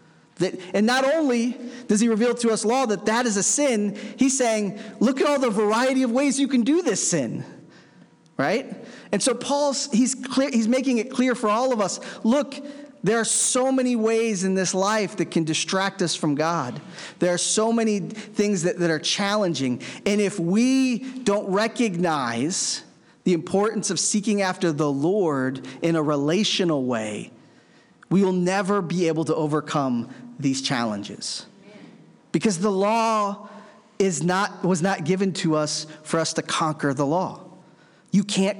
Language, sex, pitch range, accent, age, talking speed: English, male, 170-230 Hz, American, 40-59, 170 wpm